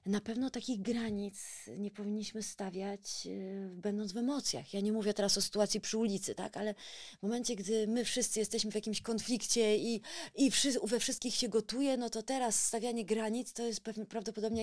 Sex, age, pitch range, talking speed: female, 30-49, 200-235 Hz, 175 wpm